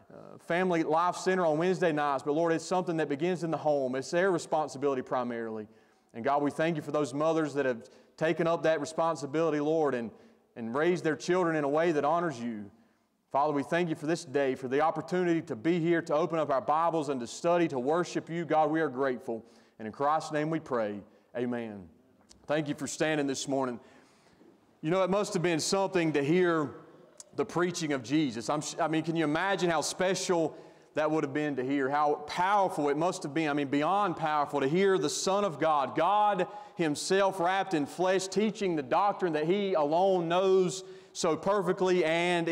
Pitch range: 145-180 Hz